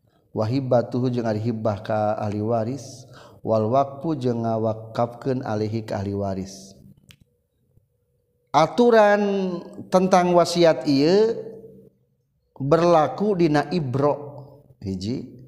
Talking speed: 70 wpm